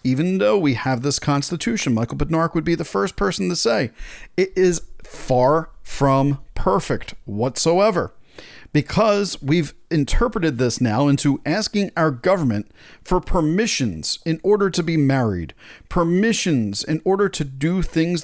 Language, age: English, 40-59